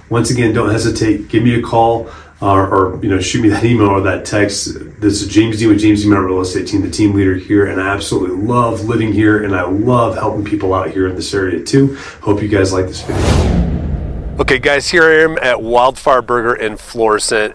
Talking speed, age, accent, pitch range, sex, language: 230 wpm, 30-49, American, 110-140 Hz, male, English